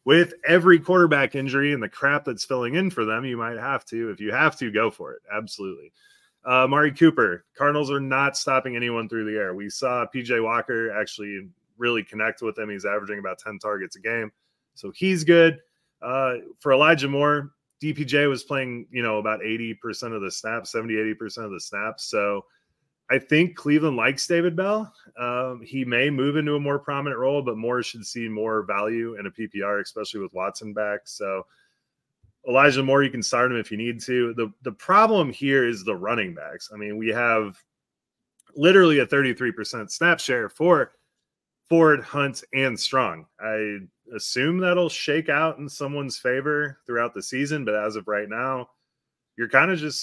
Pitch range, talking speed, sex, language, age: 110-145 Hz, 185 wpm, male, English, 30-49